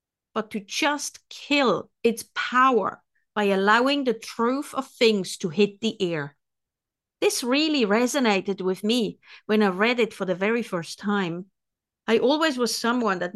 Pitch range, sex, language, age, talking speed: 200-255 Hz, female, English, 50-69, 155 wpm